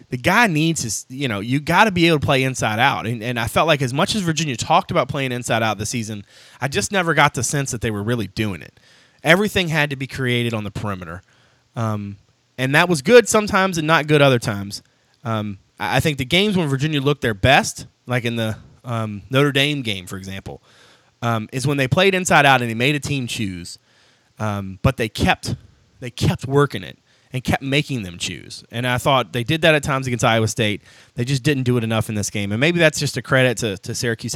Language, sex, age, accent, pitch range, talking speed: English, male, 30-49, American, 110-140 Hz, 240 wpm